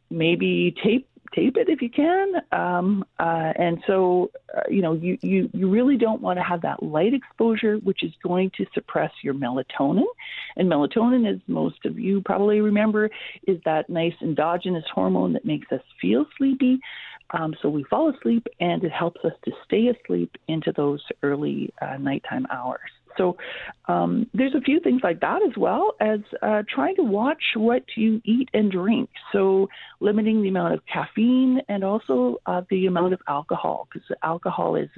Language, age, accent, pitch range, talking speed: English, 40-59, American, 180-260 Hz, 180 wpm